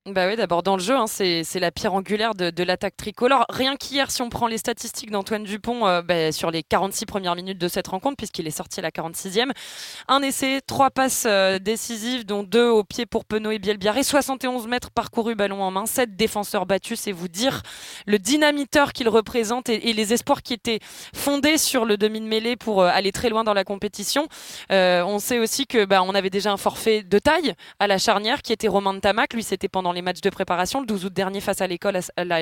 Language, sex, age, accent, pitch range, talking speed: French, female, 20-39, French, 190-235 Hz, 245 wpm